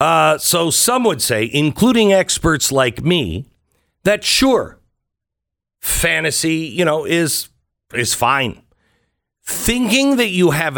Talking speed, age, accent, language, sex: 115 wpm, 50-69, American, English, male